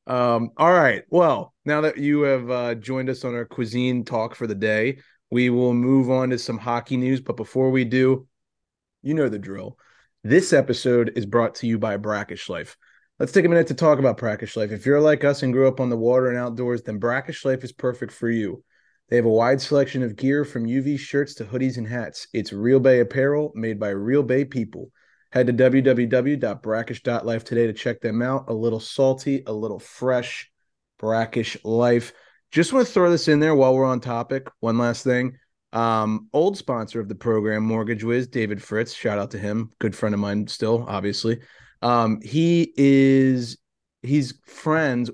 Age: 30-49